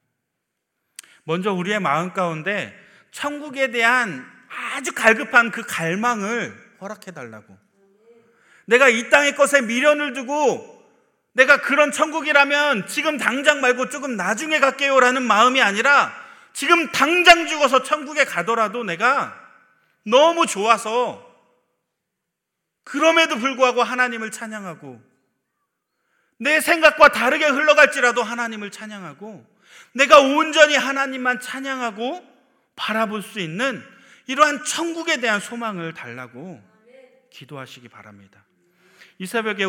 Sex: male